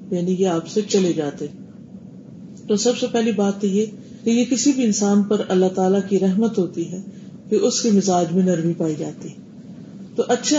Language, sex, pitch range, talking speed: Urdu, female, 190-220 Hz, 185 wpm